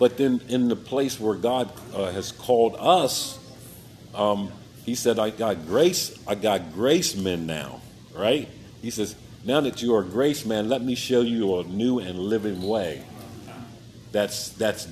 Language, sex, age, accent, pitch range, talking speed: English, male, 50-69, American, 100-125 Hz, 175 wpm